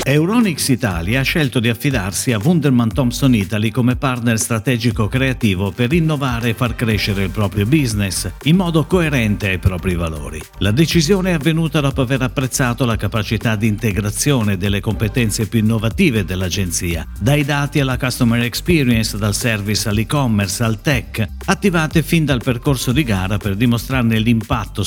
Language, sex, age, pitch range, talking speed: Italian, male, 50-69, 105-140 Hz, 150 wpm